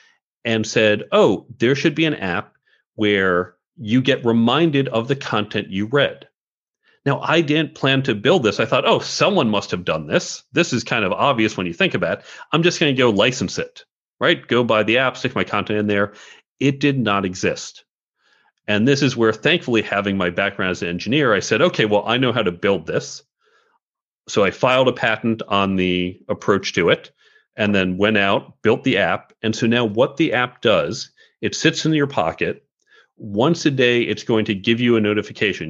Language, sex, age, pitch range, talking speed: English, male, 40-59, 105-135 Hz, 205 wpm